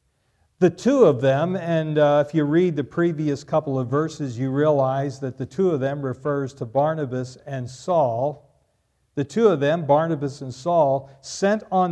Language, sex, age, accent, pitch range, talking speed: English, male, 50-69, American, 140-190 Hz, 175 wpm